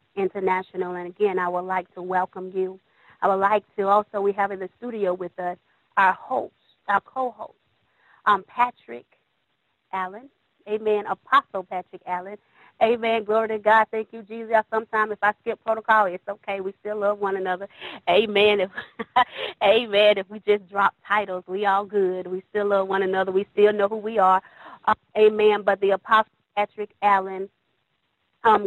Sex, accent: female, American